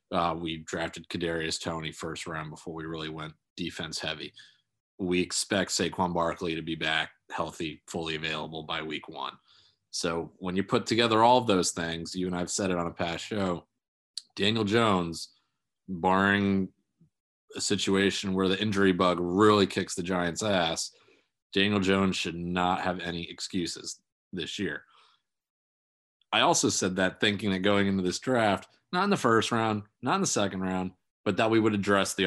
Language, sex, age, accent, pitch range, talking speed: English, male, 30-49, American, 85-105 Hz, 175 wpm